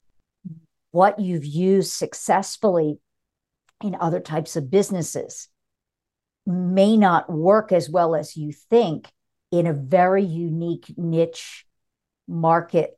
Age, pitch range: 50-69, 165-200 Hz